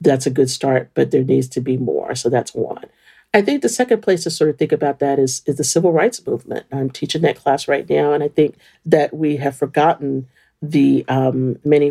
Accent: American